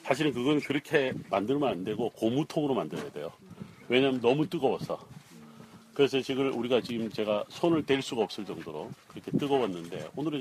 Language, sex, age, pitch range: Korean, male, 40-59, 115-140 Hz